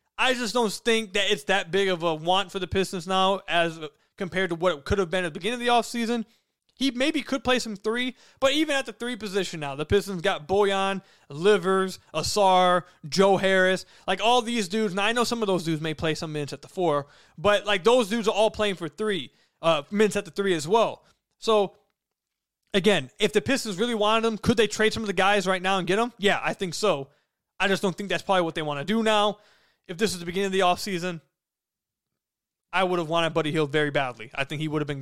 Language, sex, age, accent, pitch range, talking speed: English, male, 20-39, American, 155-210 Hz, 245 wpm